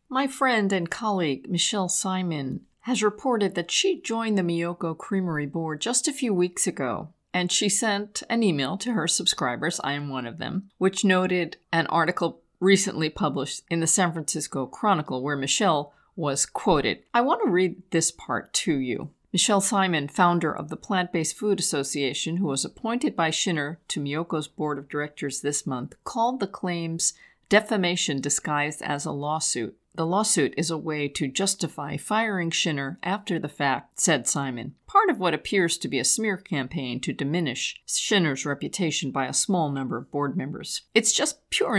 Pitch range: 145-200 Hz